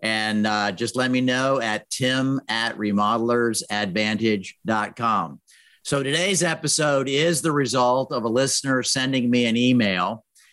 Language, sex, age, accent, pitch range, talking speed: English, male, 50-69, American, 125-160 Hz, 130 wpm